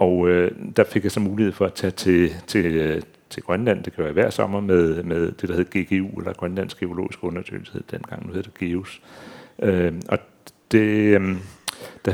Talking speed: 195 wpm